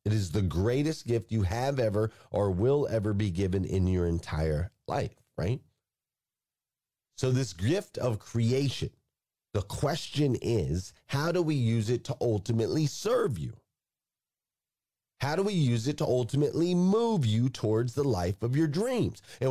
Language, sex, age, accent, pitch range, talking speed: English, male, 40-59, American, 105-145 Hz, 155 wpm